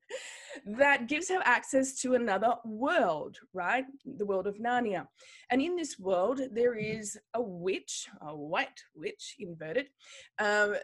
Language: English